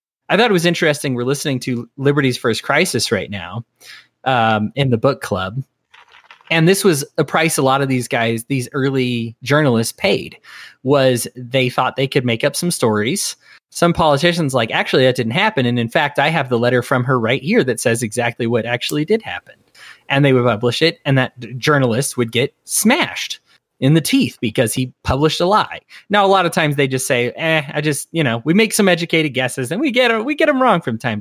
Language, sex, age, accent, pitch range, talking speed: English, male, 20-39, American, 120-150 Hz, 215 wpm